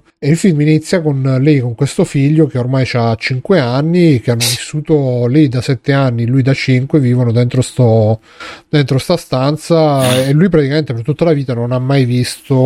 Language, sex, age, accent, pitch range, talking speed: Italian, male, 30-49, native, 125-155 Hz, 195 wpm